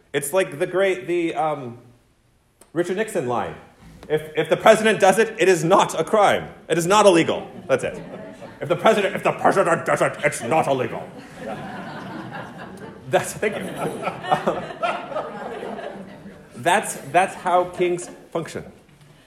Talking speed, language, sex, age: 145 wpm, English, male, 30-49